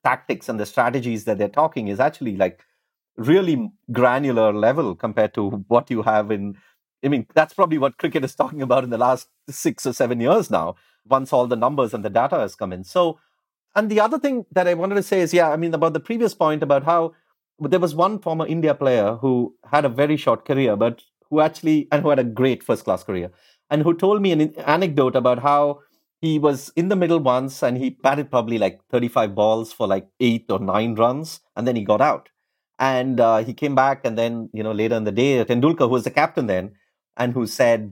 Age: 30-49